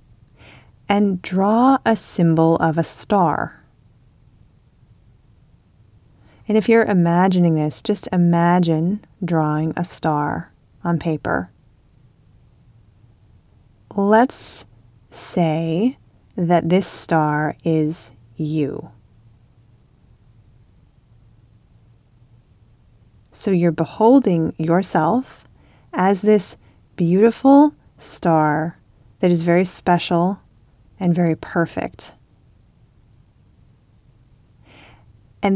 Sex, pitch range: female, 120-185 Hz